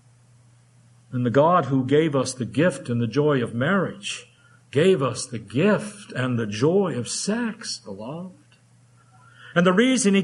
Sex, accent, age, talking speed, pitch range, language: male, American, 50-69, 165 wpm, 185-230 Hz, English